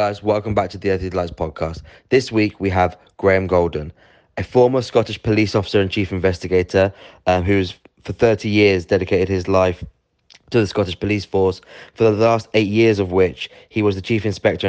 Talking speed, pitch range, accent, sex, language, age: 190 wpm, 90-105 Hz, British, male, English, 20-39